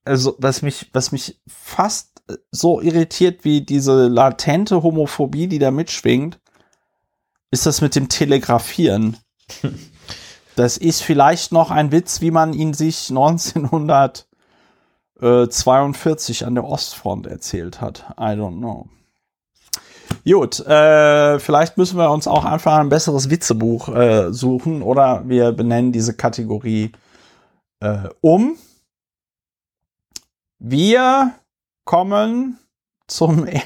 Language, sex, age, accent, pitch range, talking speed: German, male, 40-59, German, 115-160 Hz, 110 wpm